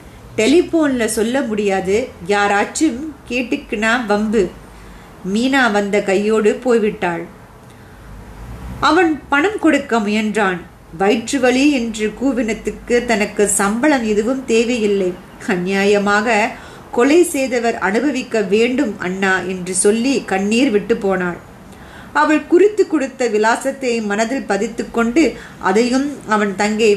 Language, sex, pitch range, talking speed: Tamil, female, 195-240 Hz, 95 wpm